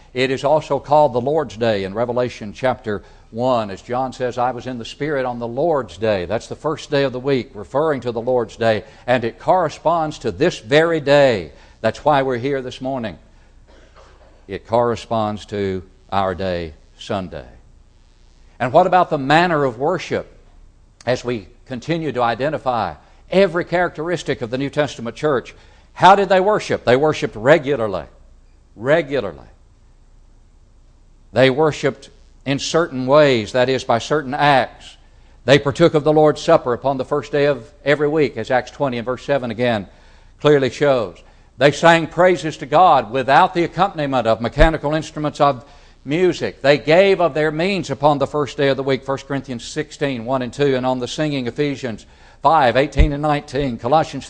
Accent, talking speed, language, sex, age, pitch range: American, 170 wpm, English, male, 60-79, 115-150 Hz